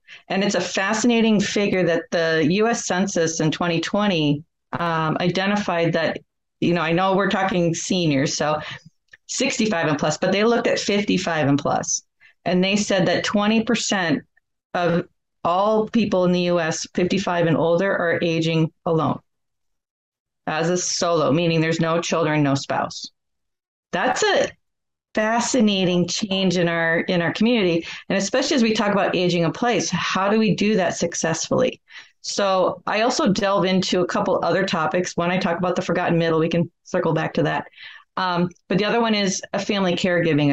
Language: English